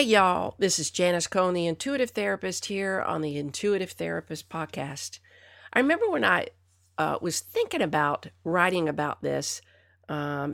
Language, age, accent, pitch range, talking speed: English, 50-69, American, 115-185 Hz, 155 wpm